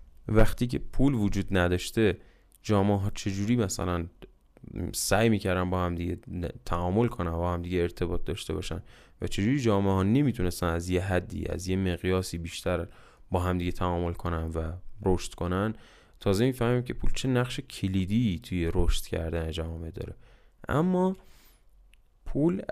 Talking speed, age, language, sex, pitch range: 150 wpm, 10-29, Persian, male, 85-105 Hz